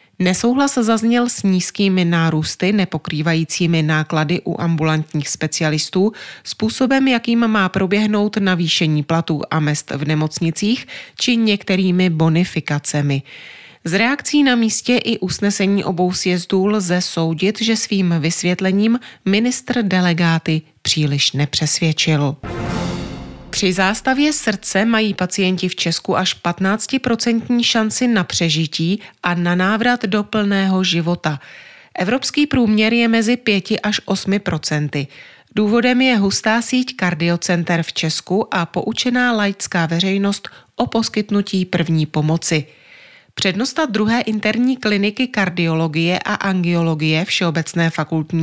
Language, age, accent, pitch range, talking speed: Czech, 30-49, native, 165-220 Hz, 110 wpm